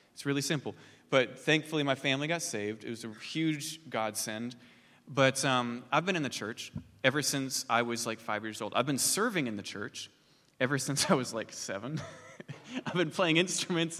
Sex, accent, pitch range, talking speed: male, American, 120-155 Hz, 195 wpm